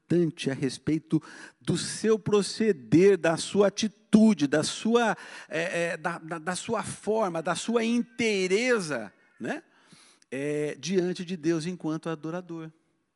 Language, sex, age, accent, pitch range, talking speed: Portuguese, male, 50-69, Brazilian, 145-220 Hz, 125 wpm